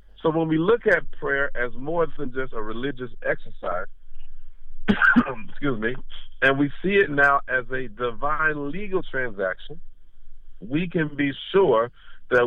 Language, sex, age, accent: English, male, 40-59, American